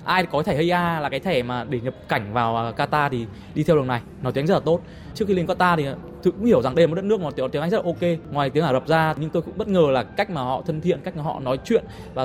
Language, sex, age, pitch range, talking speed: Vietnamese, male, 20-39, 140-180 Hz, 330 wpm